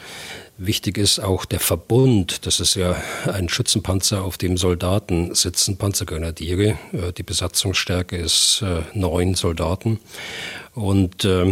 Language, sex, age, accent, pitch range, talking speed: German, male, 40-59, German, 90-105 Hz, 110 wpm